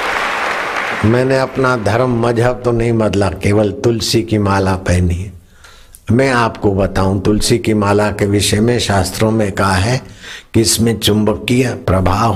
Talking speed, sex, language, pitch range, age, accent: 145 wpm, male, Hindi, 100-120 Hz, 60-79, native